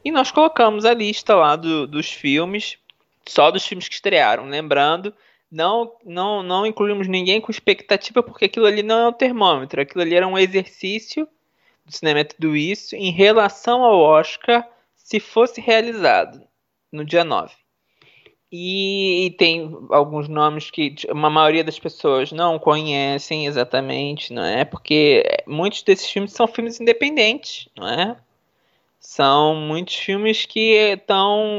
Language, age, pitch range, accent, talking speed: Portuguese, 20-39, 155-215 Hz, Brazilian, 145 wpm